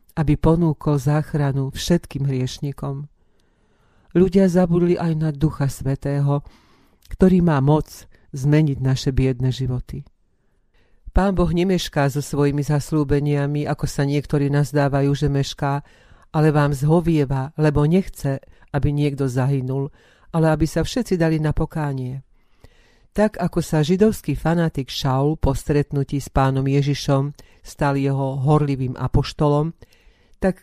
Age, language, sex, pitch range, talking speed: 40-59, Slovak, female, 135-155 Hz, 120 wpm